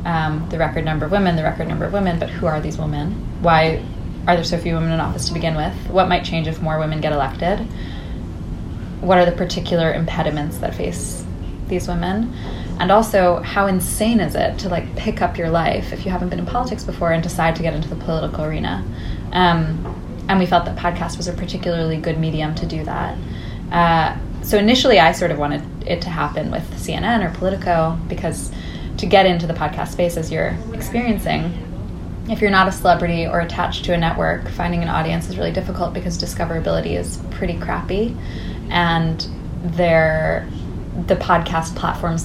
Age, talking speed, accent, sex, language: 20-39, 190 wpm, American, female, English